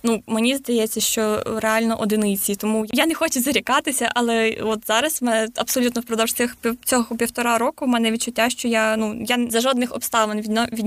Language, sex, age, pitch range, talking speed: Ukrainian, female, 20-39, 225-255 Hz, 175 wpm